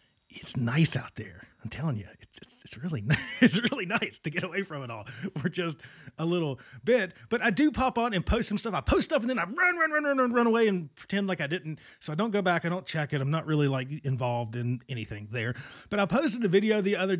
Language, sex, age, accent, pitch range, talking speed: English, male, 40-59, American, 130-205 Hz, 260 wpm